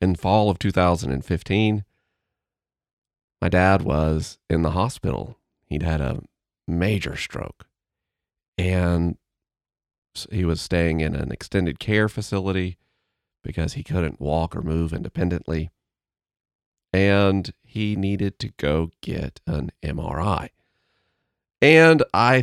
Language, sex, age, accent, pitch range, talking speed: English, male, 40-59, American, 80-105 Hz, 110 wpm